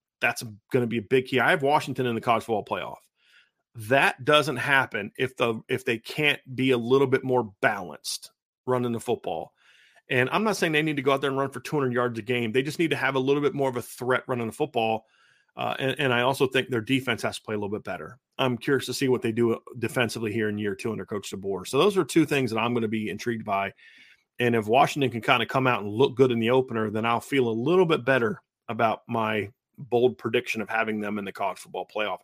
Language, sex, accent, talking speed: English, male, American, 260 wpm